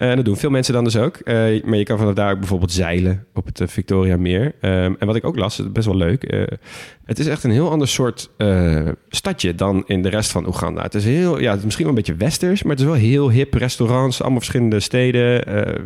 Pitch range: 85-110 Hz